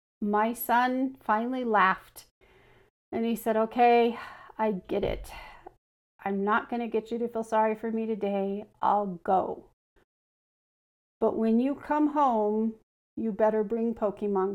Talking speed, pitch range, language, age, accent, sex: 140 wpm, 215-245 Hz, English, 40-59, American, female